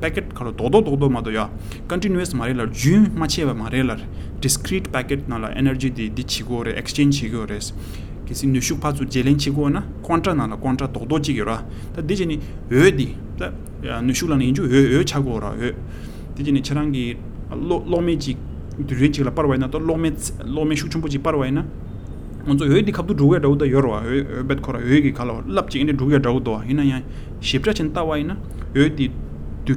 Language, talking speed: English, 80 wpm